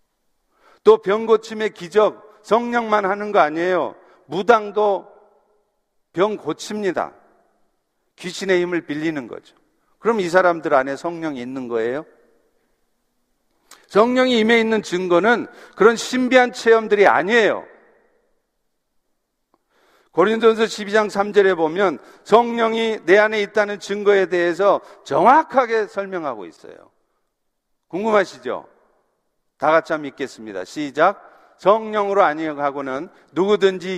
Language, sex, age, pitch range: Korean, male, 50-69, 190-225 Hz